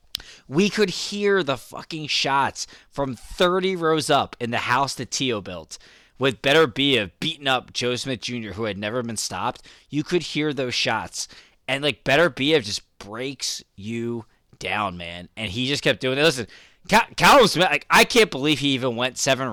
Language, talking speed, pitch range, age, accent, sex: English, 185 wpm, 115-150 Hz, 20-39, American, male